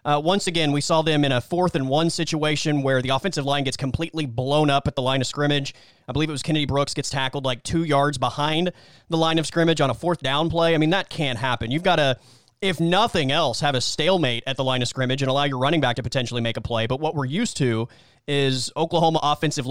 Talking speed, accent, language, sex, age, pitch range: 255 wpm, American, English, male, 30-49, 130-165 Hz